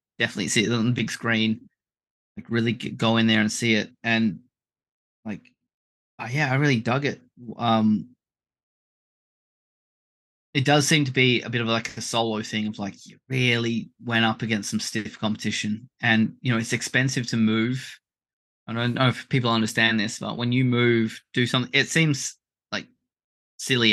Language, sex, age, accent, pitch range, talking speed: English, male, 20-39, Australian, 110-120 Hz, 175 wpm